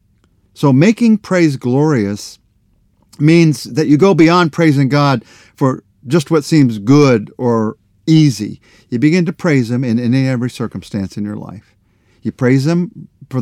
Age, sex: 50-69, male